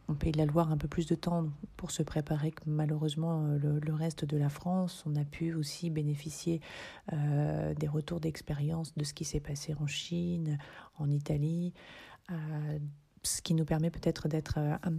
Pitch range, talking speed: 150-165 Hz, 185 wpm